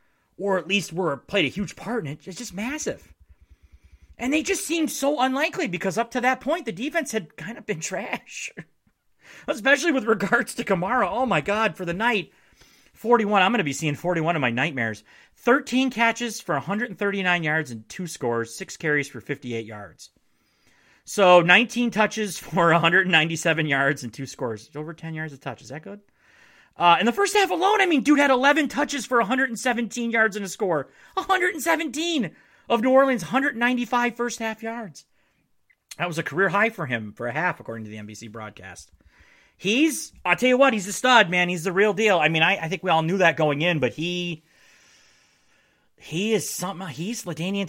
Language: English